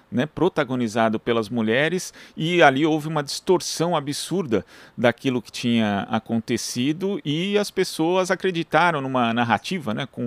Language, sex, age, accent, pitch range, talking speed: Portuguese, male, 50-69, Brazilian, 130-180 Hz, 130 wpm